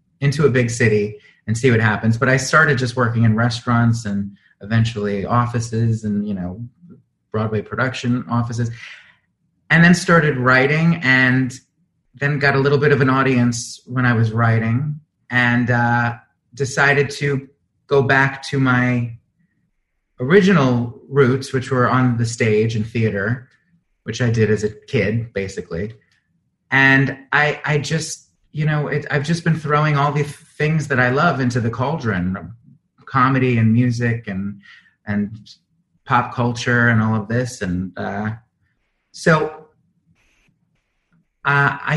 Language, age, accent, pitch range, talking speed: English, 30-49, American, 115-145 Hz, 150 wpm